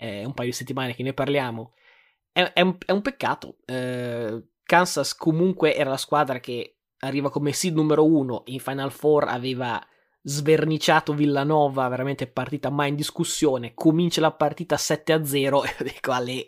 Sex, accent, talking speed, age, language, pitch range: male, native, 155 wpm, 20-39, Italian, 135-165 Hz